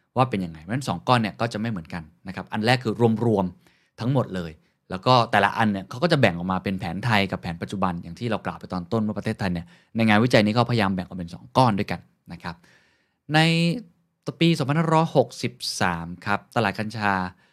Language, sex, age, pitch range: Thai, male, 20-39, 95-125 Hz